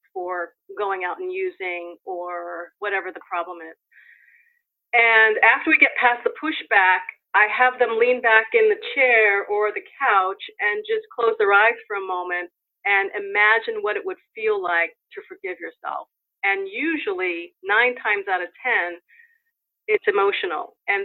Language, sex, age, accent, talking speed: English, female, 30-49, American, 160 wpm